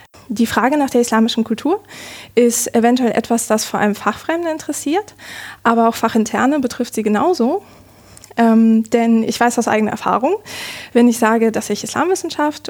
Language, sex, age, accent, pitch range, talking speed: German, female, 20-39, German, 215-255 Hz, 155 wpm